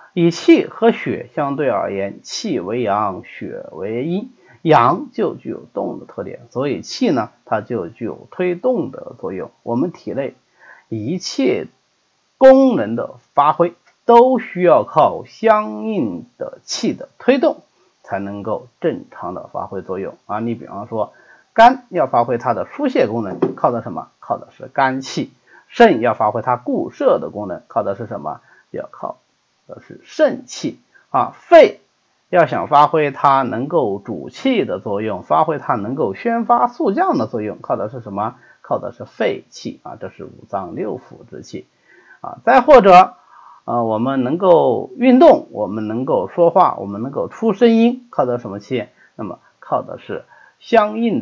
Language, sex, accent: Chinese, male, native